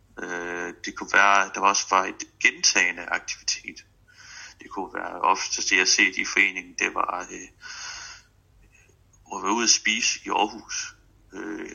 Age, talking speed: 30-49, 145 wpm